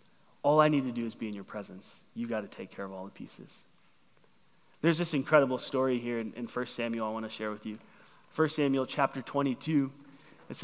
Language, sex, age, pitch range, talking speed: English, male, 30-49, 140-180 Hz, 220 wpm